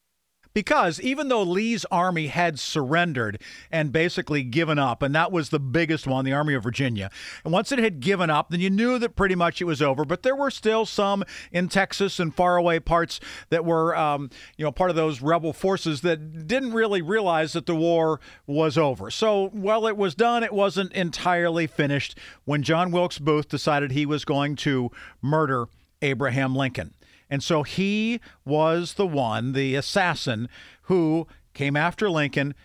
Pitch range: 140-190 Hz